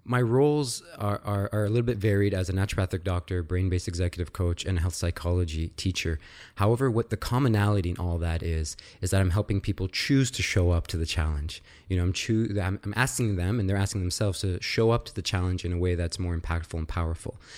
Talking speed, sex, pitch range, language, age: 230 wpm, male, 85-100 Hz, English, 20-39